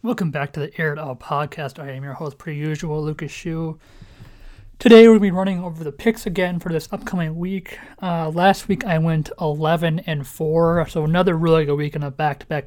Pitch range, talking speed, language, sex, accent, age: 145-180 Hz, 215 wpm, English, male, American, 30-49